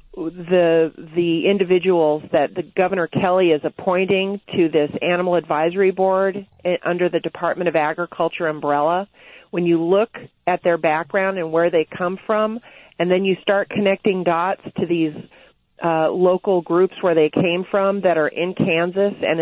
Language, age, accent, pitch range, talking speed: English, 40-59, American, 165-195 Hz, 160 wpm